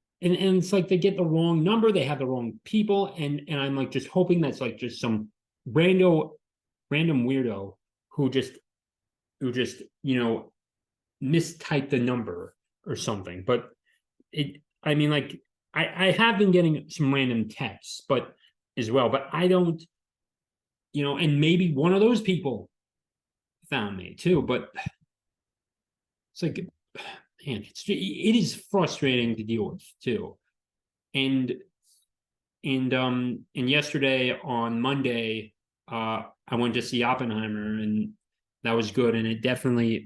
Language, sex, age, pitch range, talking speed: English, male, 30-49, 115-150 Hz, 150 wpm